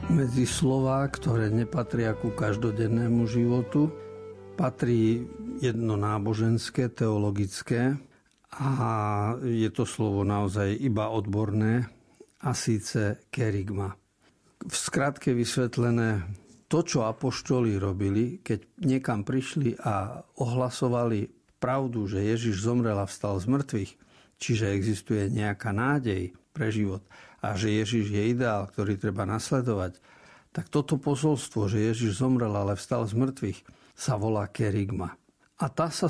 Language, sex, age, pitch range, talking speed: Slovak, male, 50-69, 105-130 Hz, 120 wpm